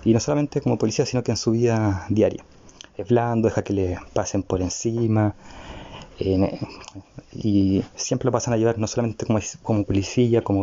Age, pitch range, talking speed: 20-39, 100-115 Hz, 180 wpm